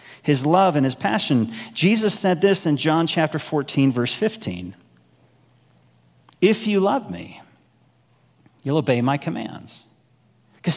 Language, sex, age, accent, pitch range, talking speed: English, male, 40-59, American, 125-170 Hz, 130 wpm